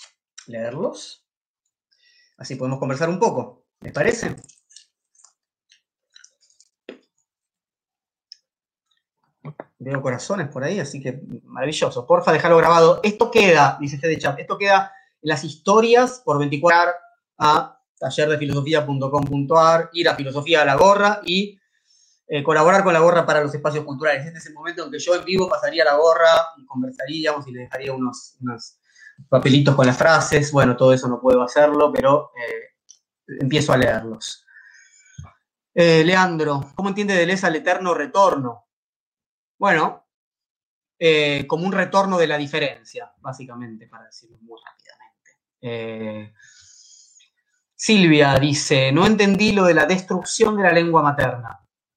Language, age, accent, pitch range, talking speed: Spanish, 30-49, Argentinian, 140-200 Hz, 135 wpm